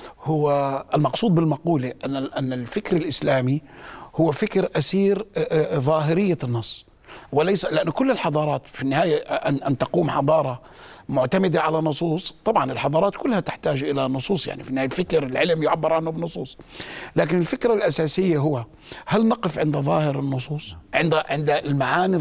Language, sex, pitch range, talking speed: Arabic, male, 140-170 Hz, 135 wpm